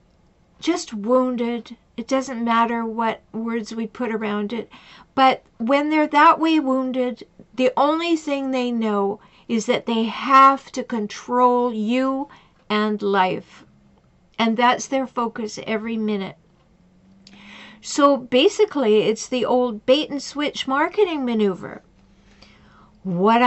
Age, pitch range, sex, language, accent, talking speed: 50-69, 190-260 Hz, female, English, American, 120 wpm